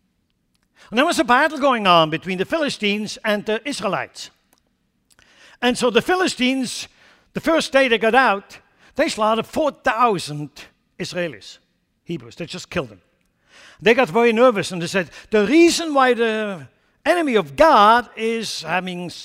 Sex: male